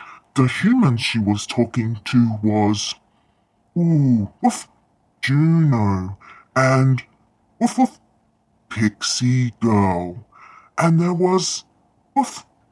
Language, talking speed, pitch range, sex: English, 90 wpm, 105-155 Hz, female